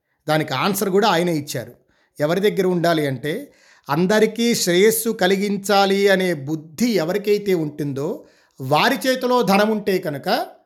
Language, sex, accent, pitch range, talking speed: Telugu, male, native, 155-205 Hz, 120 wpm